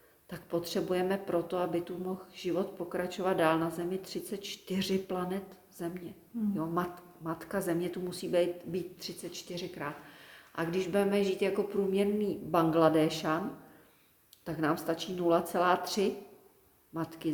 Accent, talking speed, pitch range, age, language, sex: native, 120 wpm, 170-195 Hz, 40-59, Czech, female